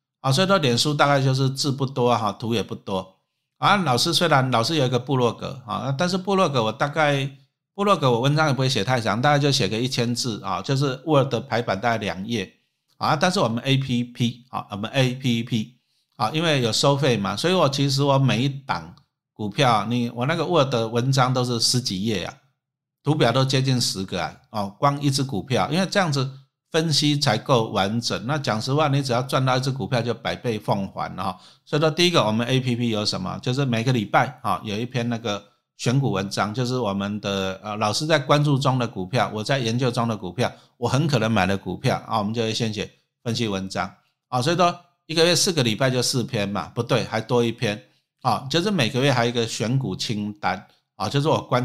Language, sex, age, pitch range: Chinese, male, 50-69, 110-140 Hz